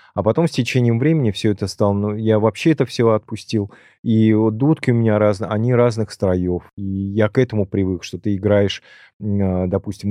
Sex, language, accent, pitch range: male, Russian, native, 100-120 Hz